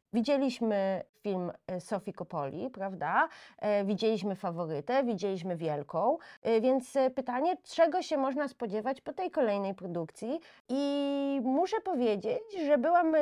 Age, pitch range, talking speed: 30-49, 180-275 Hz, 110 wpm